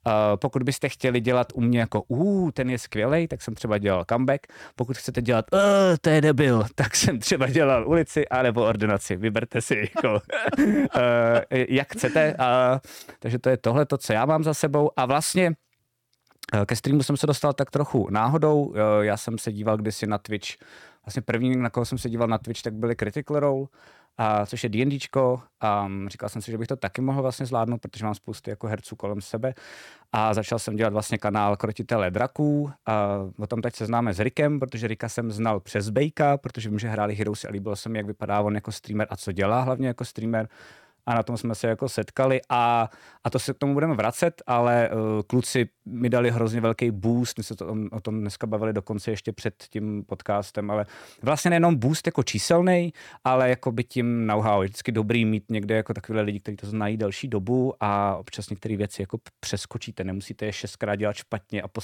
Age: 20-39